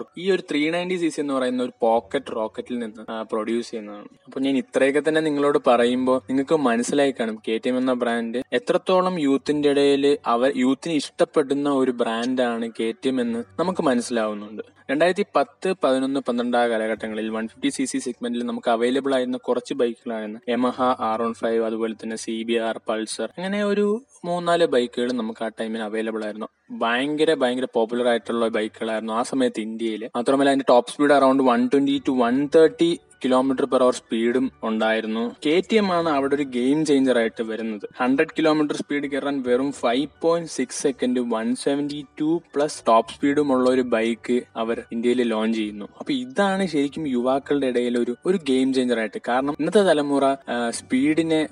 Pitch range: 115-150 Hz